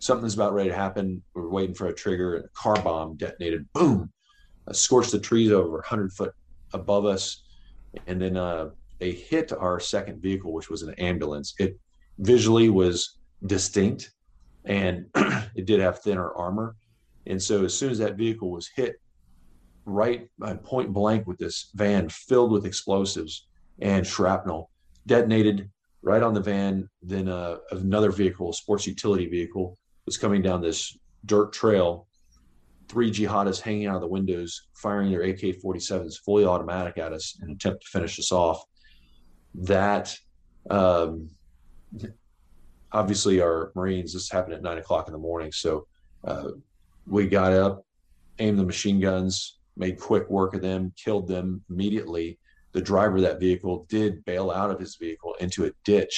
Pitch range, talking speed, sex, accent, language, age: 85-100 Hz, 165 wpm, male, American, English, 40-59